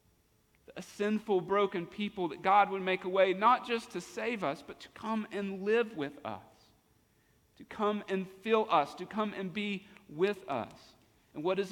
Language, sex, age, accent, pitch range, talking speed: English, male, 40-59, American, 140-200 Hz, 185 wpm